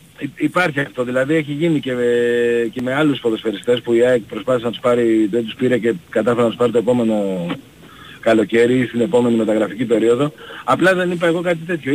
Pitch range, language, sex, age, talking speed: 125-165 Hz, Greek, male, 40-59, 200 wpm